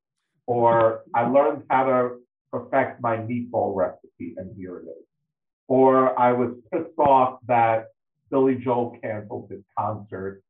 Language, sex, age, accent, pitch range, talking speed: English, male, 50-69, American, 110-140 Hz, 135 wpm